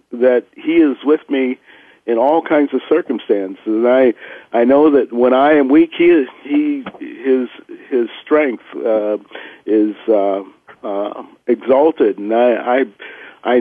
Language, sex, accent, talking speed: English, male, American, 150 wpm